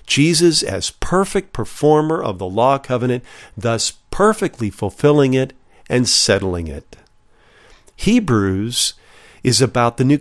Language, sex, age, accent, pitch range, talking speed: English, male, 50-69, American, 110-150 Hz, 120 wpm